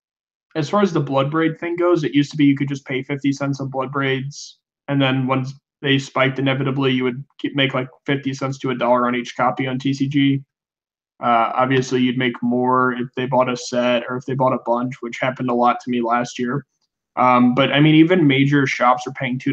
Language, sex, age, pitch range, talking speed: English, male, 20-39, 130-145 Hz, 225 wpm